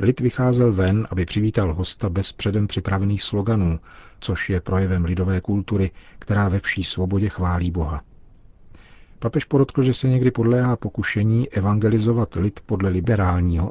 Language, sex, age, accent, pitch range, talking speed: Czech, male, 50-69, native, 95-110 Hz, 140 wpm